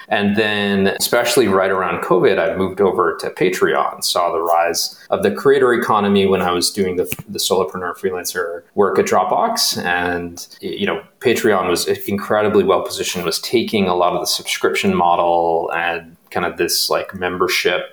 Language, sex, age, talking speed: English, male, 30-49, 170 wpm